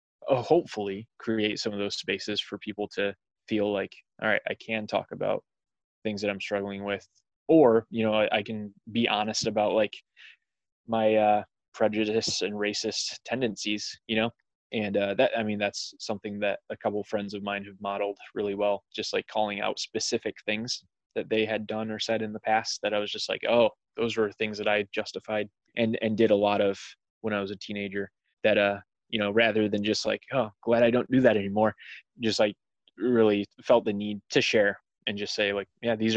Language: English